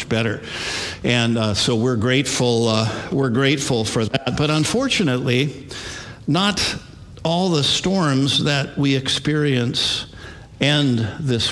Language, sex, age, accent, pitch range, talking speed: English, male, 50-69, American, 115-140 Hz, 115 wpm